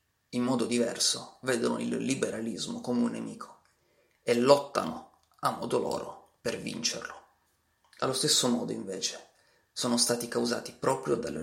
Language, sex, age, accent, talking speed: Italian, male, 30-49, native, 130 wpm